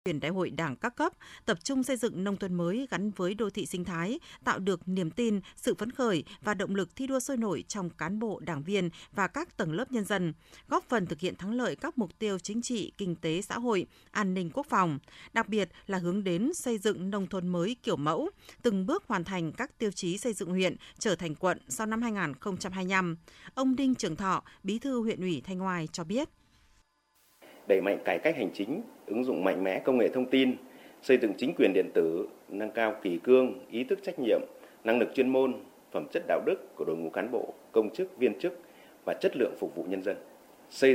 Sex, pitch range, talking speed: female, 165-230 Hz, 230 wpm